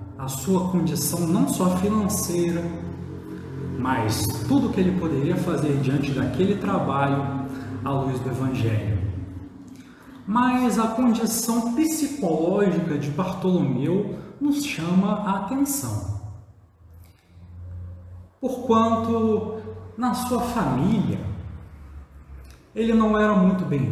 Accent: Brazilian